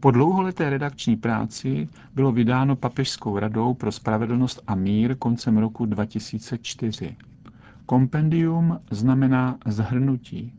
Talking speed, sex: 100 wpm, male